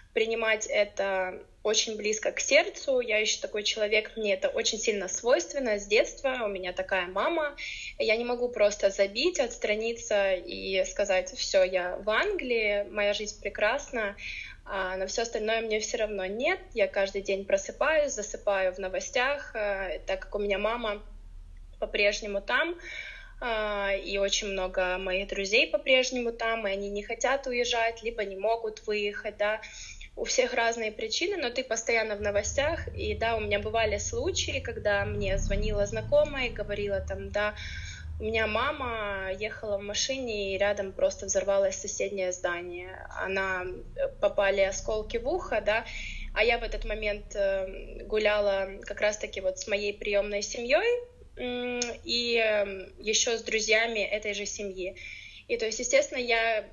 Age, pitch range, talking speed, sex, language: 20-39, 195-240 Hz, 150 wpm, female, Russian